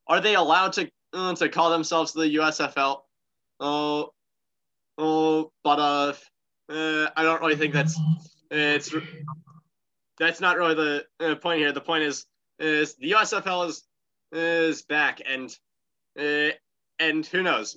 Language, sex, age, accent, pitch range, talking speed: English, male, 20-39, American, 150-175 Hz, 145 wpm